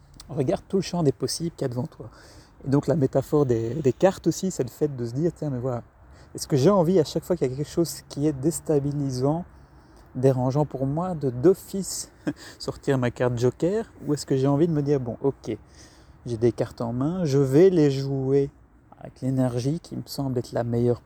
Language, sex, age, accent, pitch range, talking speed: French, male, 30-49, French, 125-150 Hz, 225 wpm